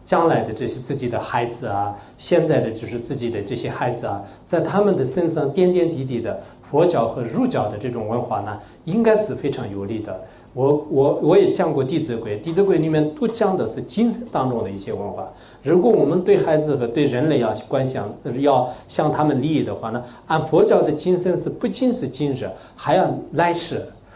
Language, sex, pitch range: English, male, 120-185 Hz